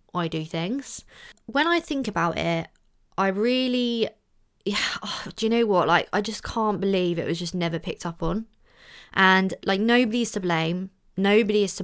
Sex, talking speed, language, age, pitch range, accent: female, 175 wpm, English, 20-39, 180-215 Hz, British